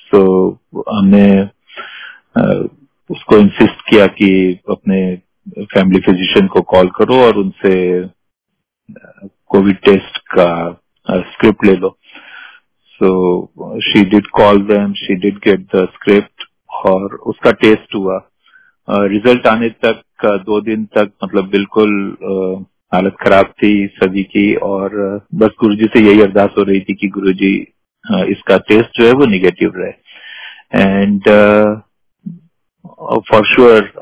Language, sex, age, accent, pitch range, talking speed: Hindi, male, 40-59, native, 95-115 Hz, 120 wpm